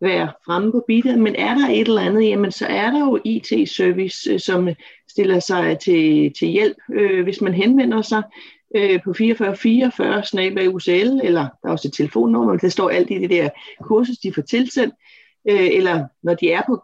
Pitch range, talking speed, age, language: 180-230 Hz, 195 wpm, 30-49, Danish